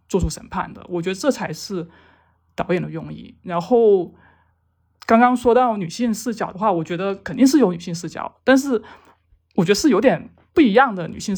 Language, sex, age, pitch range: Chinese, male, 20-39, 170-230 Hz